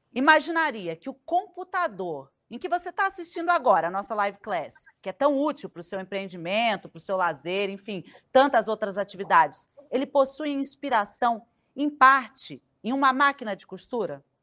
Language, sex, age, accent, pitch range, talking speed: Portuguese, female, 40-59, Brazilian, 195-265 Hz, 165 wpm